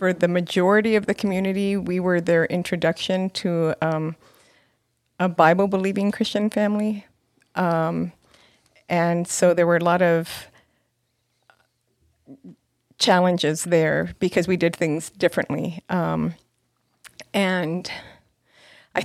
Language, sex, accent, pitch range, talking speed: English, female, American, 165-190 Hz, 105 wpm